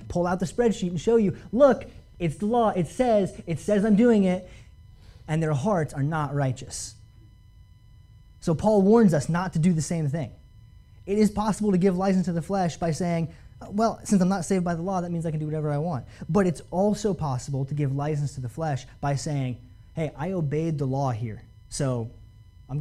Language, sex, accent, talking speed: English, male, American, 215 wpm